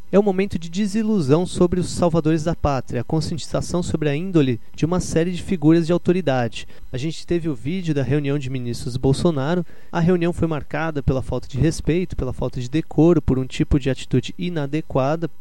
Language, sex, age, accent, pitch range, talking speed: Portuguese, male, 30-49, Brazilian, 145-185 Hz, 195 wpm